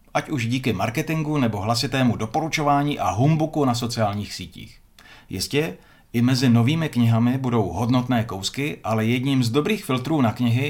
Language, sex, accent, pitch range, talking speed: Czech, male, native, 110-145 Hz, 150 wpm